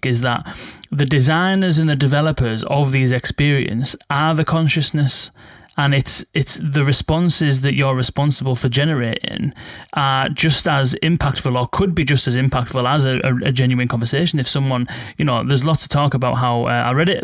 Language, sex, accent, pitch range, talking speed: English, male, British, 125-150 Hz, 185 wpm